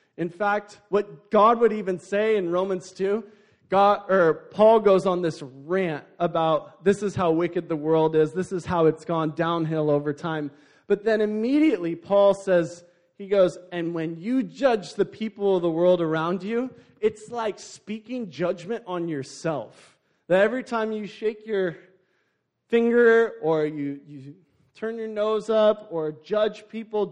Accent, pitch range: American, 160-215 Hz